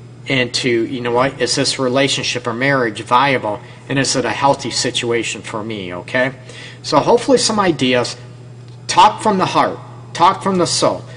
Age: 40-59